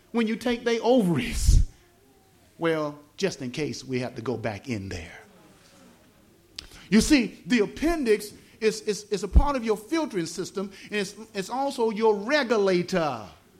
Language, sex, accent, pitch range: English, male, American, 165-235 Hz